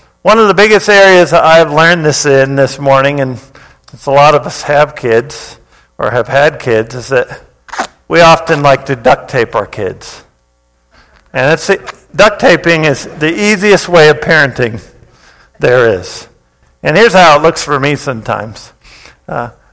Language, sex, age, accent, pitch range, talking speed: English, male, 50-69, American, 145-205 Hz, 170 wpm